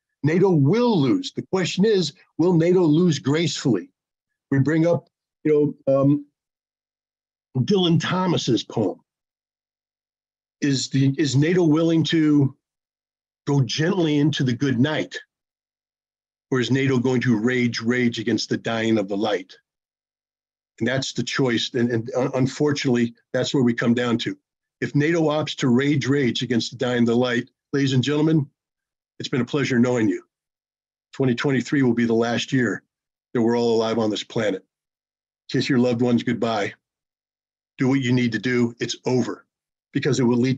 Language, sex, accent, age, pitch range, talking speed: English, male, American, 50-69, 120-145 Hz, 160 wpm